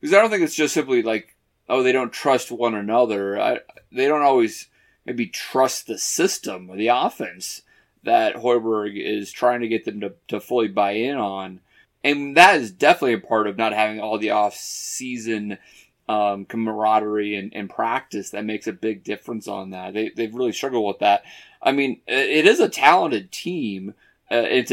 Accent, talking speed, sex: American, 185 wpm, male